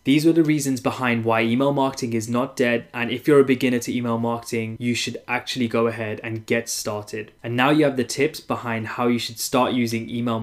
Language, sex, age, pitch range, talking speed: English, male, 20-39, 115-125 Hz, 230 wpm